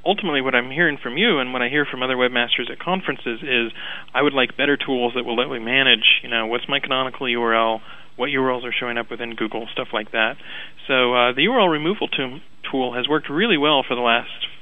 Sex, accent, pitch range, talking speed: male, American, 115-135 Hz, 225 wpm